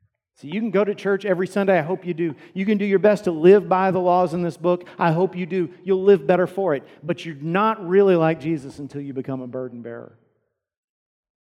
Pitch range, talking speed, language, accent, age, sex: 125-165 Hz, 240 wpm, English, American, 40-59, male